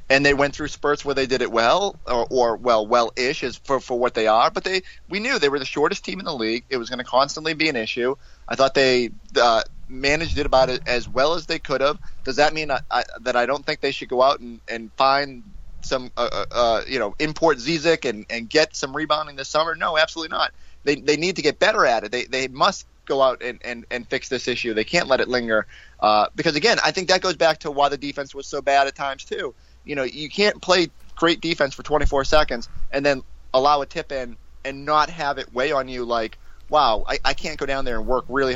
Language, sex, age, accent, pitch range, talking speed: English, male, 30-49, American, 120-150 Hz, 255 wpm